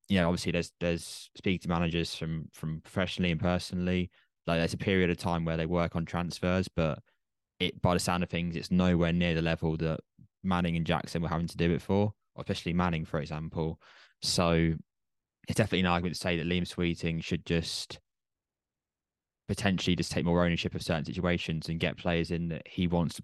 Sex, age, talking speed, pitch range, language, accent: male, 20-39, 205 wpm, 85-95 Hz, English, British